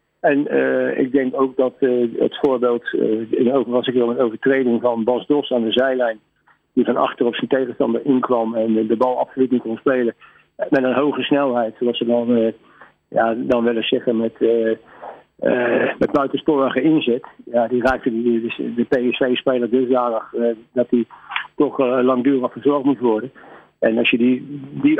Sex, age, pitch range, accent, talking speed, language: male, 50-69, 120-135 Hz, Dutch, 185 wpm, Dutch